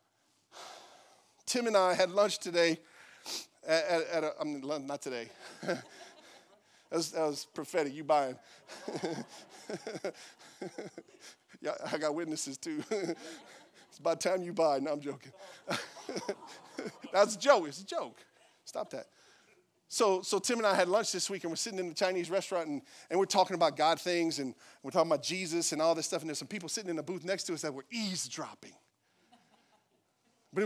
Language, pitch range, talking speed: English, 170-255 Hz, 170 wpm